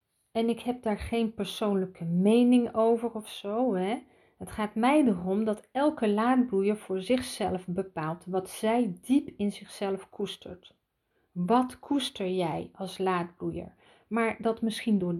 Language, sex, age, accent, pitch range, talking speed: Dutch, female, 40-59, Dutch, 195-240 Hz, 140 wpm